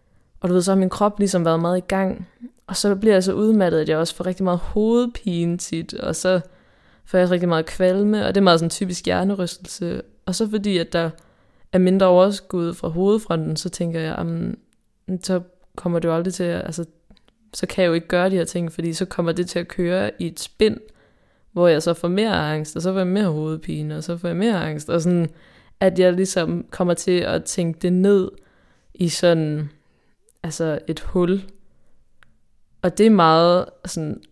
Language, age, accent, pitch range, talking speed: Danish, 20-39, native, 160-190 Hz, 210 wpm